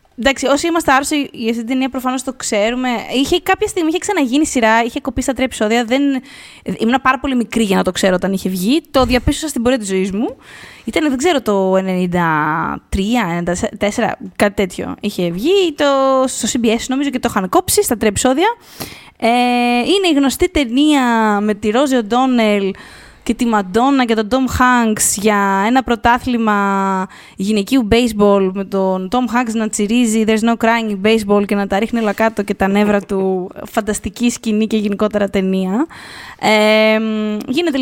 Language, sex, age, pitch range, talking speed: Greek, female, 20-39, 205-265 Hz, 170 wpm